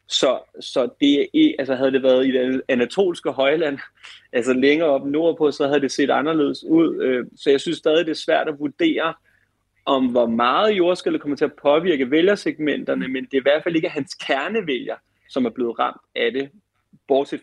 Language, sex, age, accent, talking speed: Danish, male, 30-49, native, 190 wpm